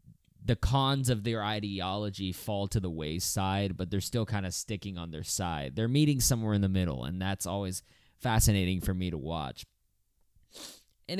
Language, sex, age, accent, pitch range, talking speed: English, male, 20-39, American, 95-110 Hz, 175 wpm